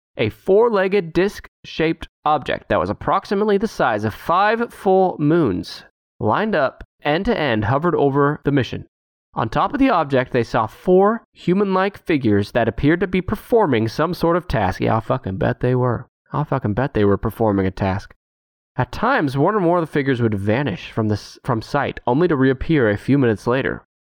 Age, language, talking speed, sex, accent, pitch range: 20-39, English, 195 wpm, male, American, 110-165 Hz